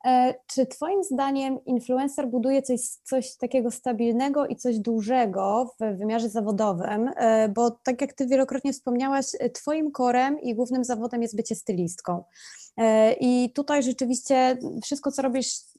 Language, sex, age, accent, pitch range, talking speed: Polish, female, 20-39, native, 215-260 Hz, 135 wpm